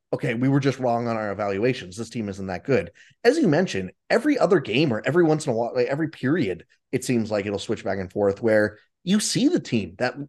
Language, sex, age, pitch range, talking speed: English, male, 20-39, 120-175 Hz, 240 wpm